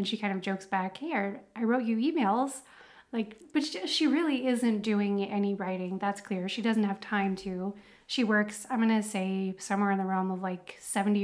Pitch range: 200-235 Hz